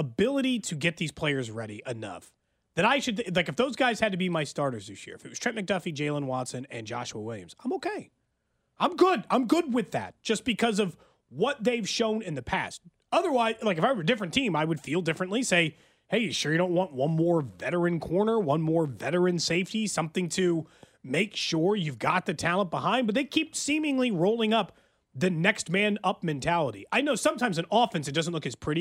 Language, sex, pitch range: English, male, 150-220 Hz